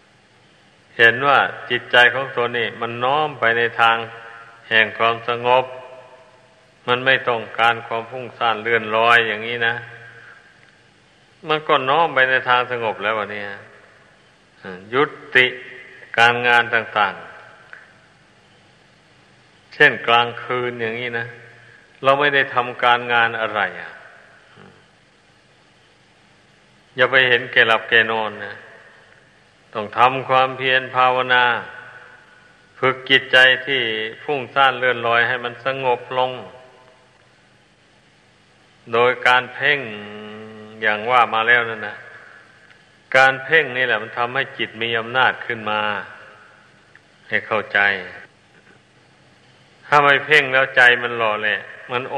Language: Thai